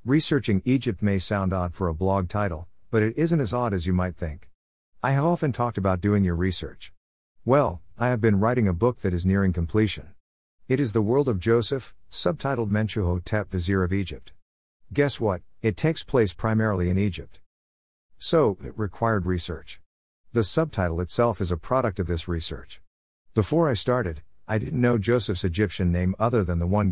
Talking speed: 185 wpm